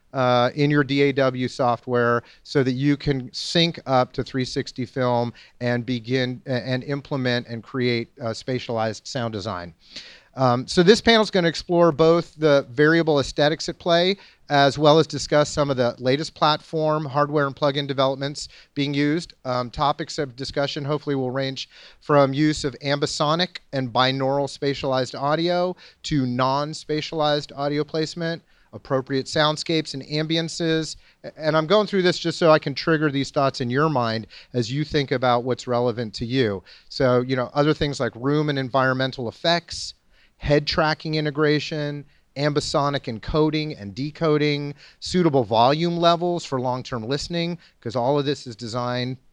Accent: American